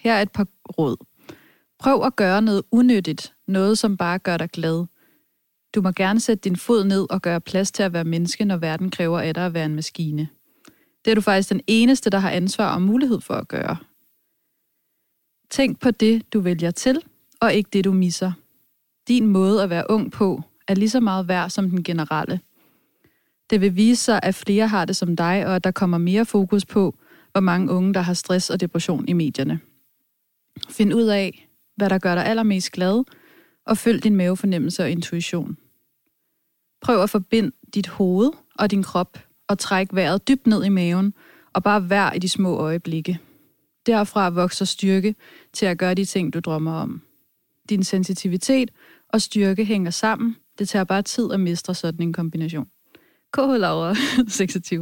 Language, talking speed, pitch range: Danish, 190 wpm, 180-215 Hz